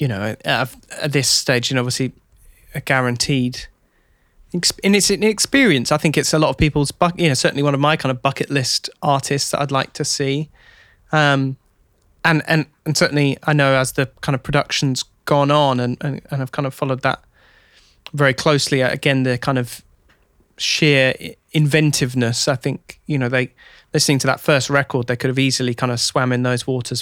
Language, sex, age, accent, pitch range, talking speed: English, male, 20-39, British, 130-155 Hz, 190 wpm